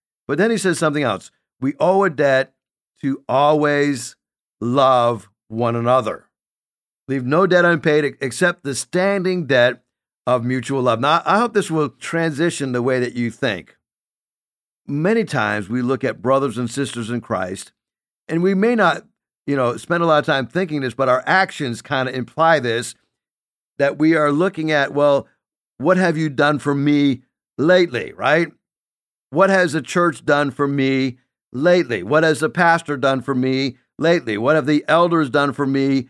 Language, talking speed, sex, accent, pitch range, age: English, 175 wpm, male, American, 130-170 Hz, 50-69